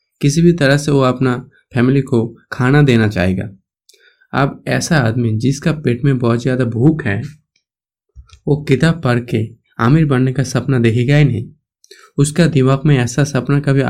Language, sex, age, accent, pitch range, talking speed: Hindi, male, 20-39, native, 115-145 Hz, 165 wpm